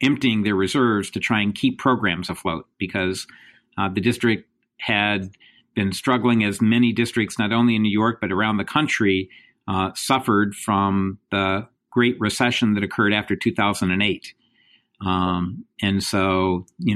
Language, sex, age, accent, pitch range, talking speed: English, male, 50-69, American, 100-120 Hz, 150 wpm